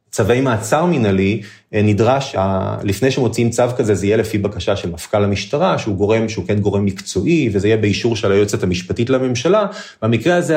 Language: Hebrew